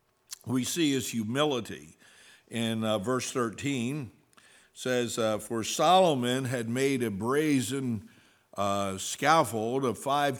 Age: 60-79